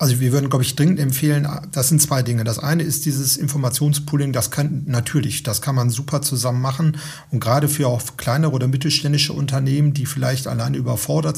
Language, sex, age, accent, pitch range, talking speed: German, male, 40-59, German, 130-150 Hz, 195 wpm